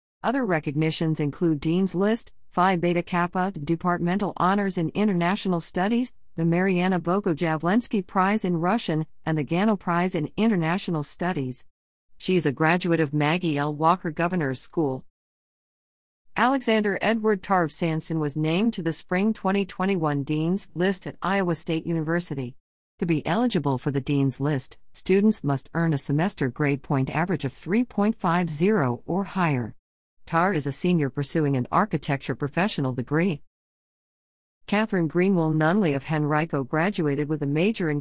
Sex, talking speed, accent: female, 140 wpm, American